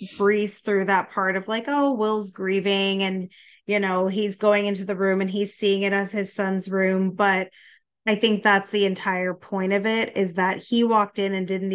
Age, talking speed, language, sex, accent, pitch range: 20-39, 210 wpm, English, female, American, 185-210 Hz